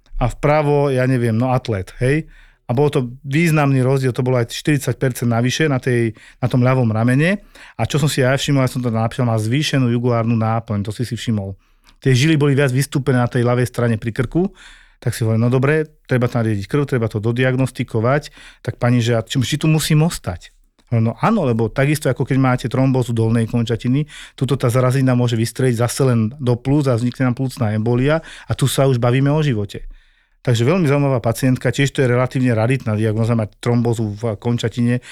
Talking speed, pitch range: 195 wpm, 120-140 Hz